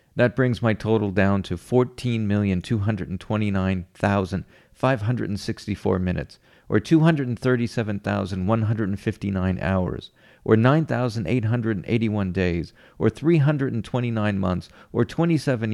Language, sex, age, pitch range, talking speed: English, male, 50-69, 105-130 Hz, 70 wpm